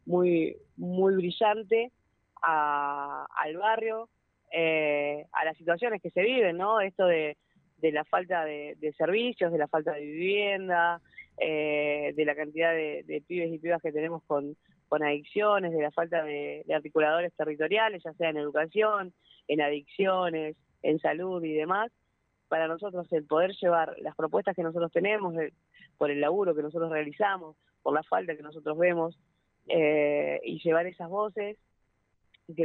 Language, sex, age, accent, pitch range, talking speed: Spanish, female, 20-39, Argentinian, 155-180 Hz, 160 wpm